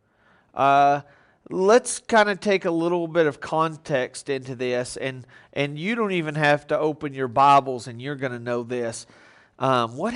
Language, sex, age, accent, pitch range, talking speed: English, male, 40-59, American, 145-200 Hz, 175 wpm